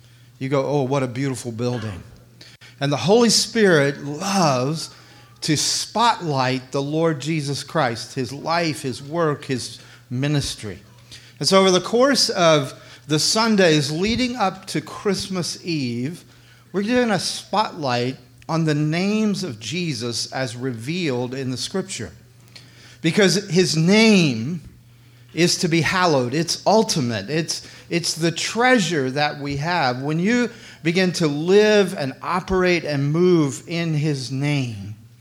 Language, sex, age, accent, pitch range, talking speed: English, male, 40-59, American, 130-180 Hz, 135 wpm